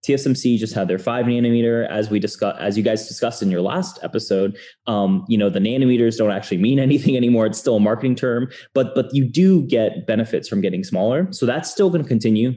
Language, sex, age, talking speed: English, male, 20-39, 220 wpm